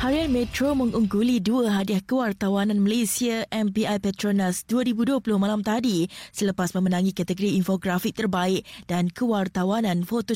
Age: 20-39